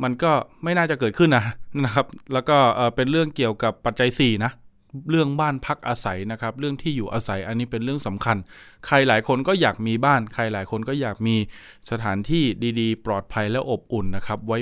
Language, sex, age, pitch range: Thai, male, 20-39, 110-135 Hz